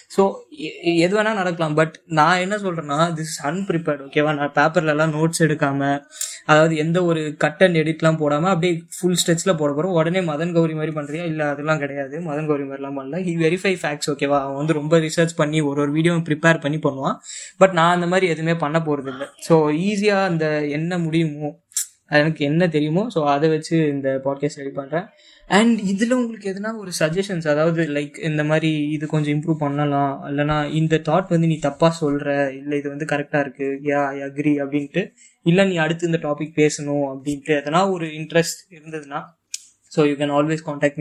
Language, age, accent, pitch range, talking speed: Tamil, 20-39, native, 145-170 Hz, 185 wpm